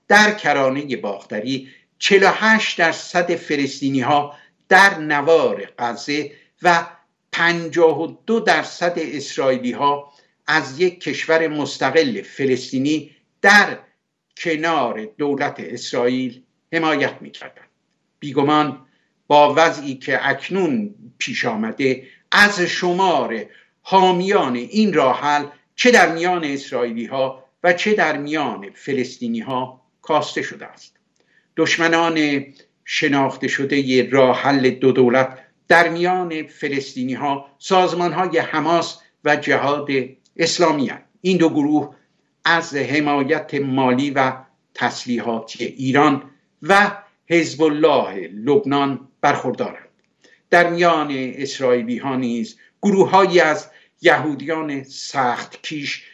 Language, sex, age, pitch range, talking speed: Persian, male, 60-79, 135-170 Hz, 95 wpm